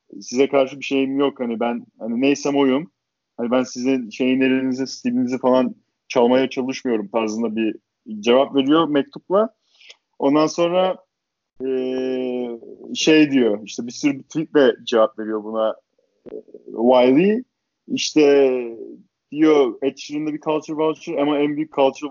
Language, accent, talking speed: Turkish, native, 130 wpm